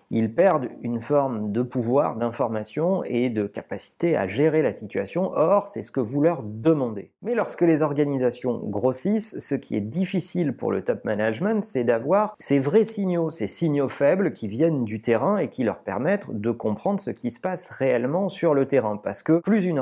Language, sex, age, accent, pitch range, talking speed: French, male, 40-59, French, 110-160 Hz, 195 wpm